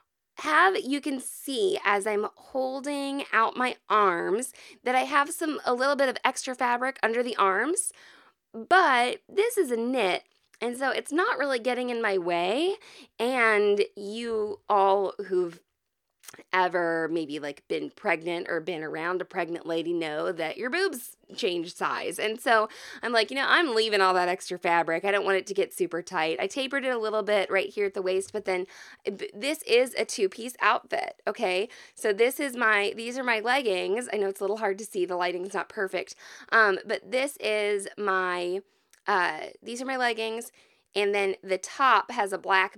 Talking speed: 190 wpm